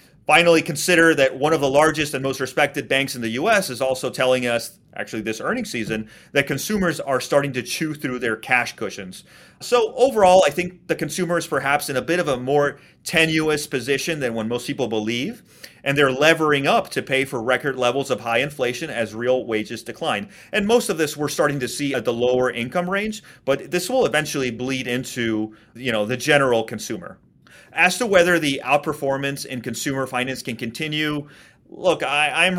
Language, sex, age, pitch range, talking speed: English, male, 30-49, 125-160 Hz, 190 wpm